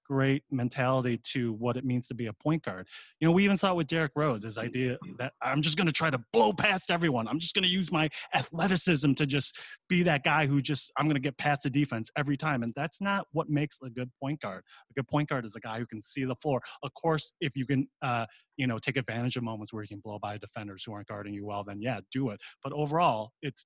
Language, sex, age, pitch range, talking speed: English, male, 20-39, 120-150 Hz, 265 wpm